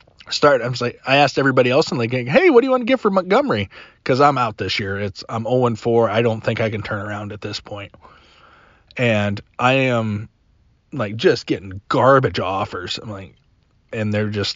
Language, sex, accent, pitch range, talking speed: English, male, American, 100-125 Hz, 200 wpm